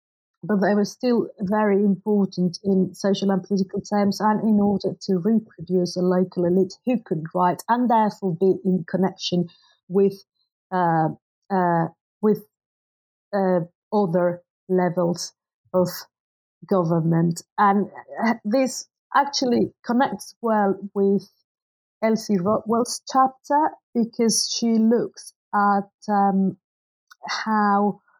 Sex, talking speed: female, 110 wpm